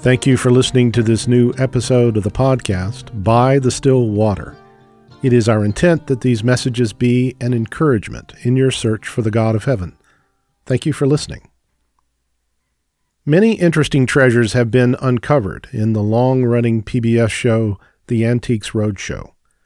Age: 40-59